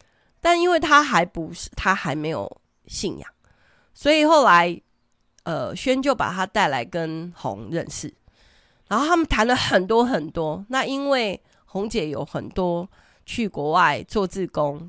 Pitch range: 165-235 Hz